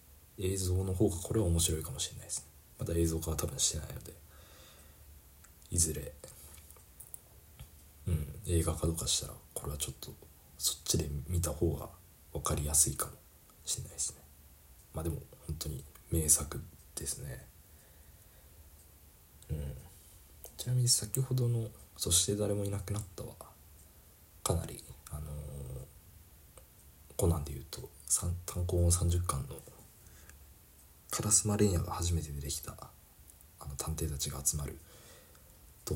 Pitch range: 75-90 Hz